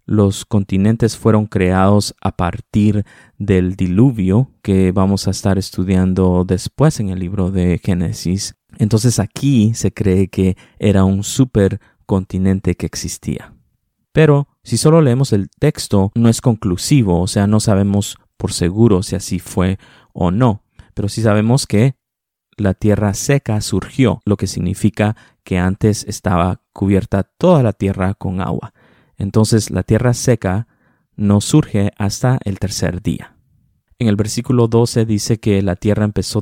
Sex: male